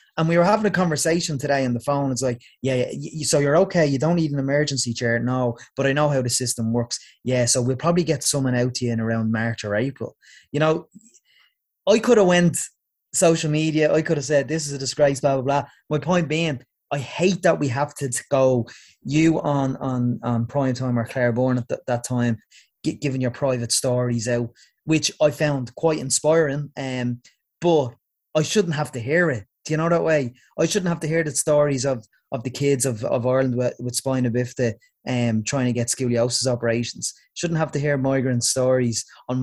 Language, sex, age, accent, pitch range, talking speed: English, male, 20-39, Irish, 125-150 Hz, 220 wpm